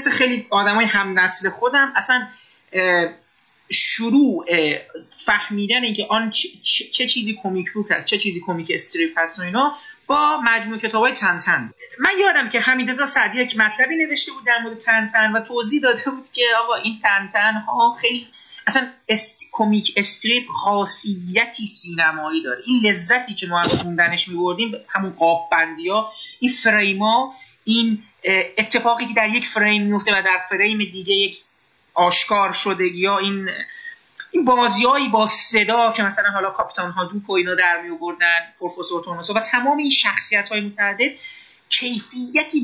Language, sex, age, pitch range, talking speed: Persian, male, 30-49, 190-250 Hz, 150 wpm